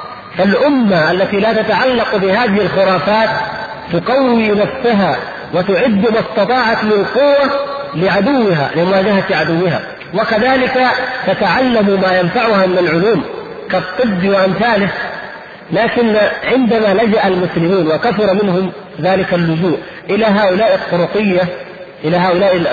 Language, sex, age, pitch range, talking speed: Arabic, male, 50-69, 185-230 Hz, 100 wpm